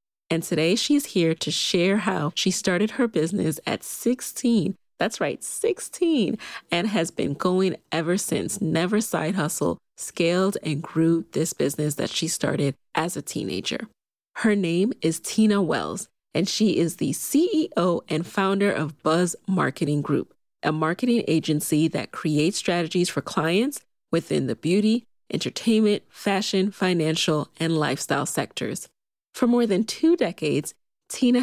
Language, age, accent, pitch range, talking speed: English, 30-49, American, 165-210 Hz, 145 wpm